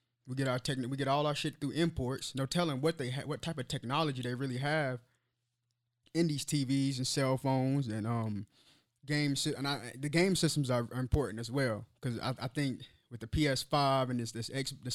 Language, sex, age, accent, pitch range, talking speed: English, male, 20-39, American, 120-150 Hz, 215 wpm